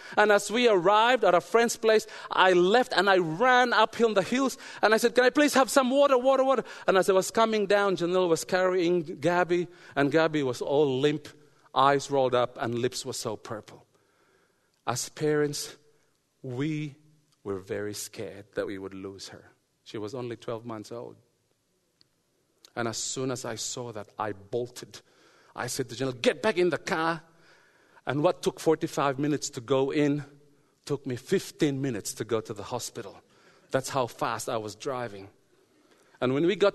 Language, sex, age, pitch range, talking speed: English, male, 40-59, 135-190 Hz, 185 wpm